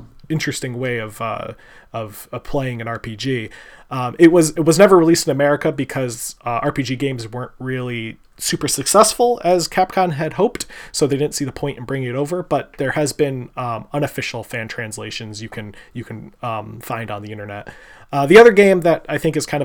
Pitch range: 120-150 Hz